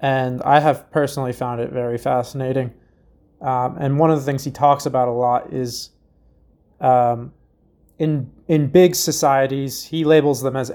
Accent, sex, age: American, male, 20-39